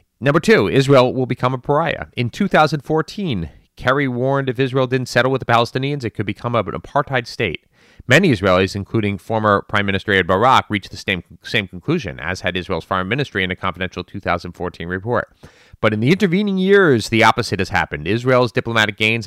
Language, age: English, 30-49